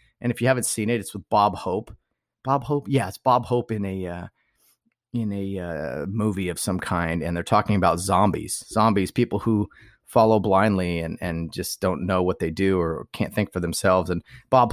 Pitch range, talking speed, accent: 95-125 Hz, 210 wpm, American